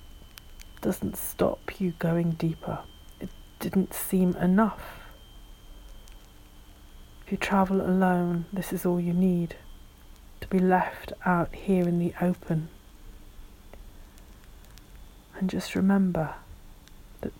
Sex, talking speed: female, 105 wpm